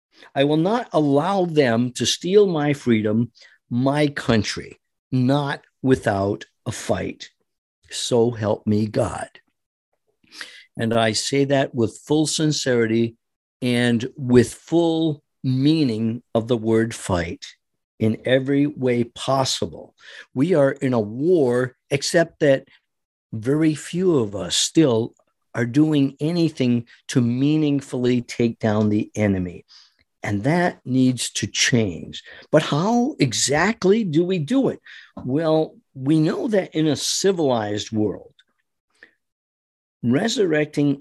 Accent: American